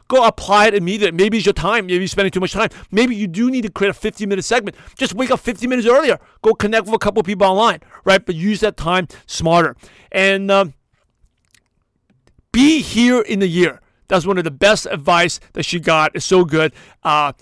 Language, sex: English, male